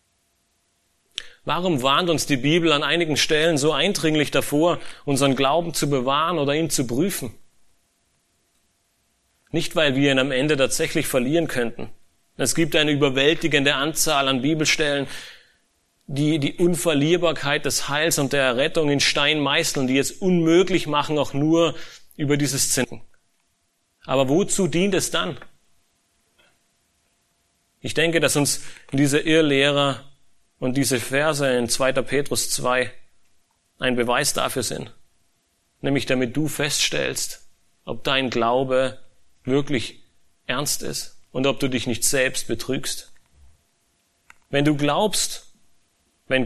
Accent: German